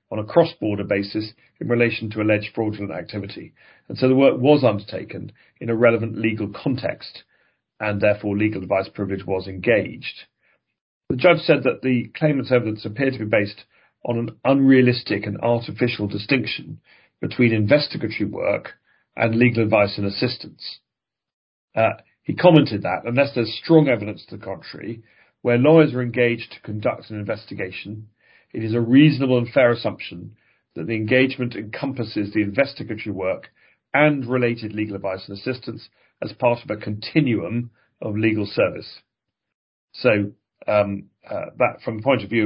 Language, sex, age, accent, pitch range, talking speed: English, male, 40-59, British, 105-125 Hz, 155 wpm